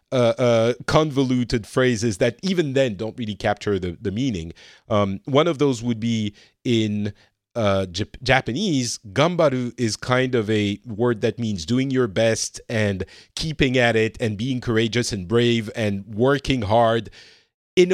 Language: English